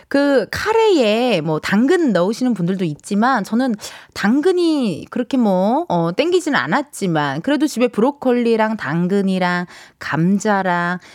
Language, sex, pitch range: Korean, female, 190-295 Hz